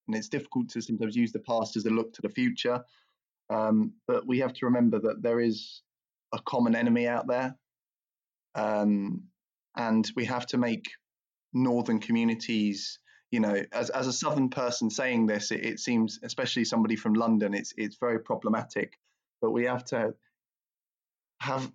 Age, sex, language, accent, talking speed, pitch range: 20-39, male, English, British, 170 wpm, 110-130 Hz